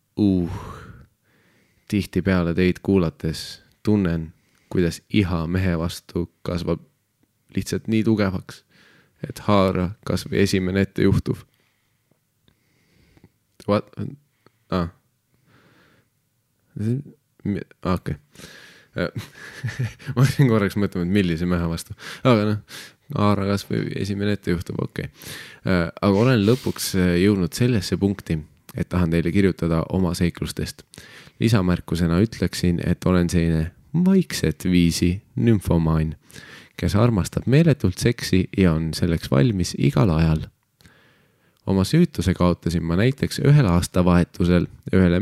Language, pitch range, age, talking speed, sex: English, 90-125 Hz, 20-39, 100 wpm, male